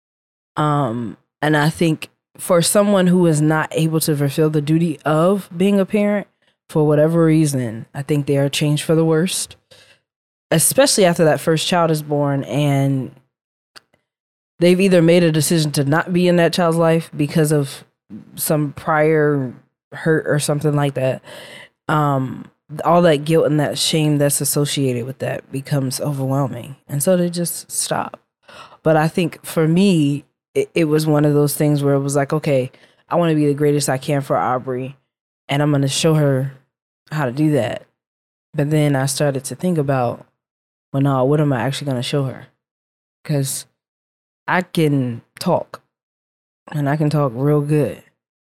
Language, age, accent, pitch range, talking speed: English, 20-39, American, 140-160 Hz, 170 wpm